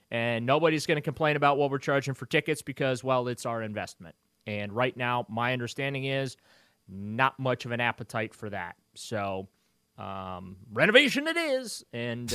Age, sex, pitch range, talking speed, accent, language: 30-49, male, 120-145 Hz, 170 wpm, American, English